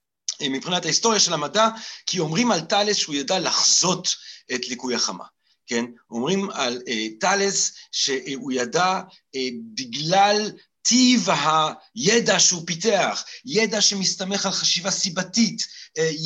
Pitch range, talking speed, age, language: 160-205 Hz, 120 wpm, 40-59, Hebrew